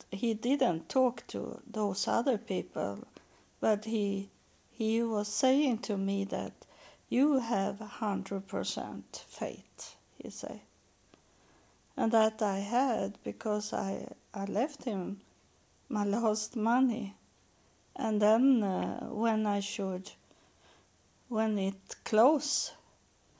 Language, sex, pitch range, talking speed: English, female, 190-225 Hz, 110 wpm